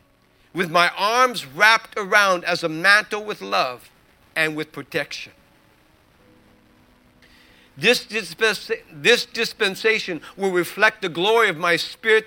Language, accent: English, American